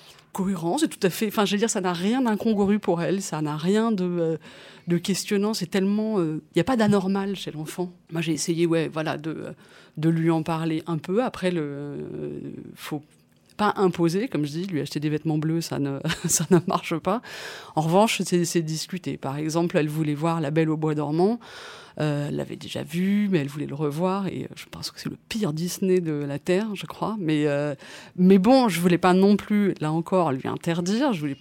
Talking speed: 220 wpm